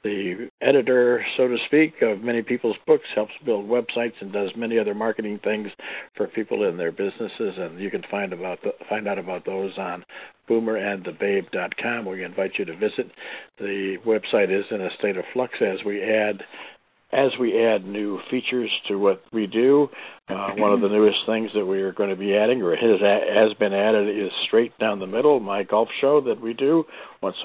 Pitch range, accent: 100-120 Hz, American